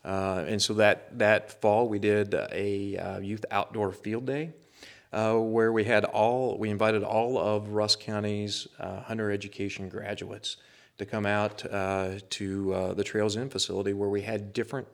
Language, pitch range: English, 100-115 Hz